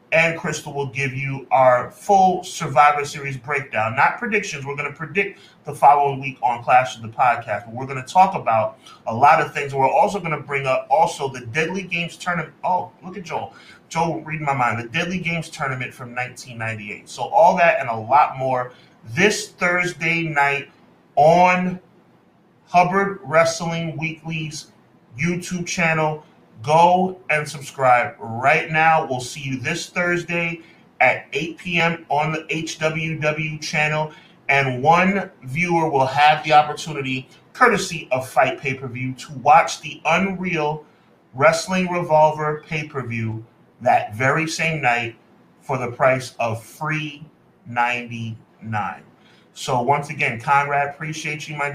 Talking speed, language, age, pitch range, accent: 145 wpm, English, 30-49, 135-165 Hz, American